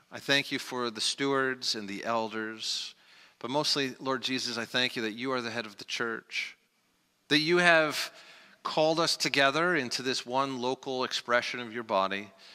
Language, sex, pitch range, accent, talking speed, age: English, male, 110-130 Hz, American, 180 wpm, 40-59